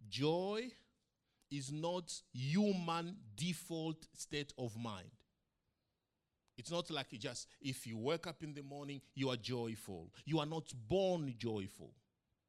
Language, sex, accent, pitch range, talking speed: English, male, Nigerian, 125-170 Hz, 135 wpm